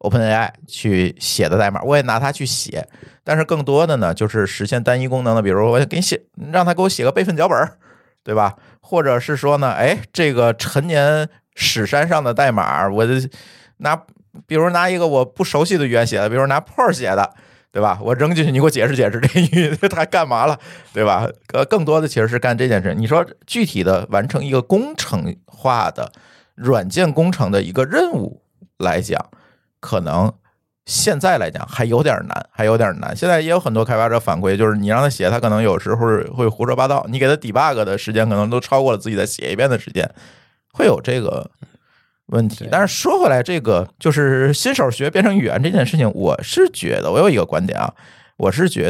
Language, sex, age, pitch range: Chinese, male, 50-69, 115-160 Hz